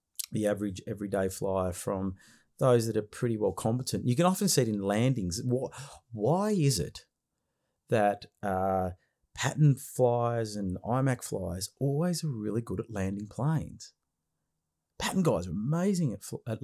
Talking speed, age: 155 wpm, 30-49